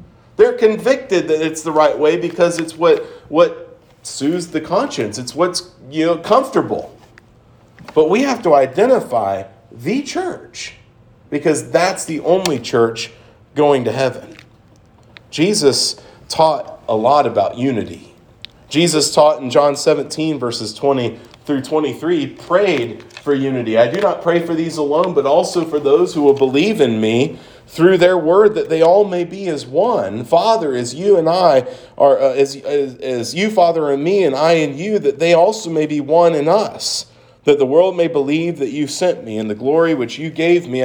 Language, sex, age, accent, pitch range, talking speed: English, male, 40-59, American, 125-170 Hz, 175 wpm